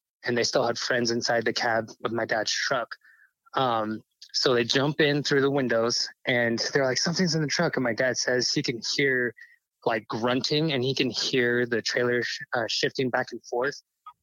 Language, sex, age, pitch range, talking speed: English, male, 20-39, 120-140 Hz, 200 wpm